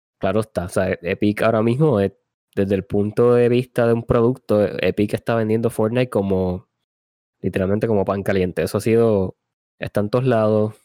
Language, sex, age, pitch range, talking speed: Spanish, male, 20-39, 100-115 Hz, 175 wpm